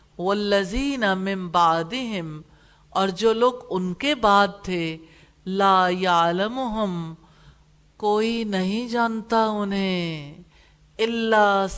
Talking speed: 80 wpm